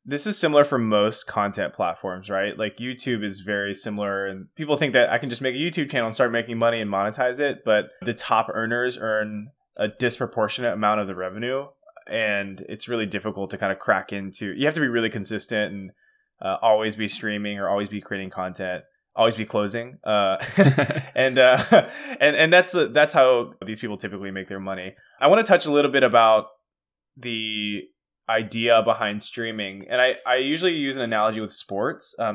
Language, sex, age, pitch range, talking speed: English, male, 20-39, 105-125 Hz, 200 wpm